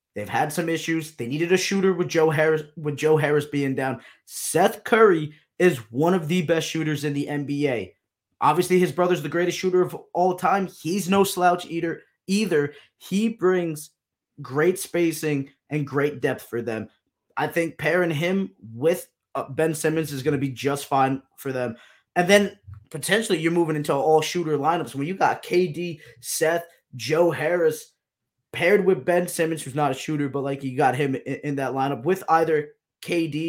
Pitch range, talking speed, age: 145-175 Hz, 180 wpm, 20-39